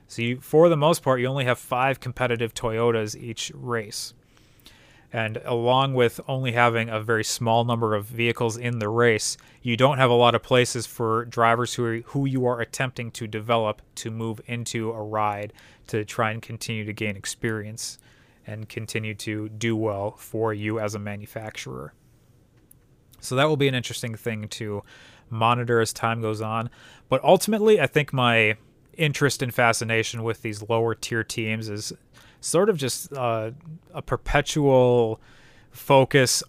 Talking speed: 165 wpm